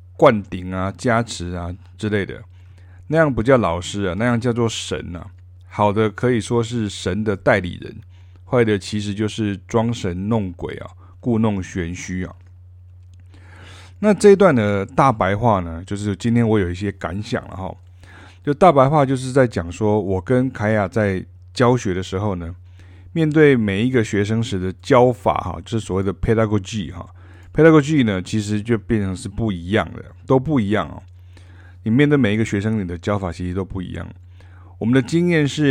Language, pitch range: Chinese, 90-115 Hz